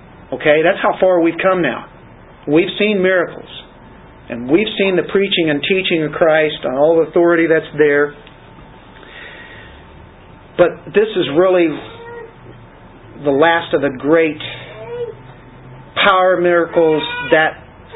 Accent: American